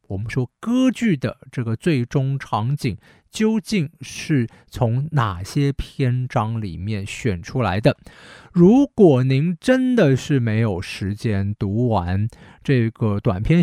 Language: Chinese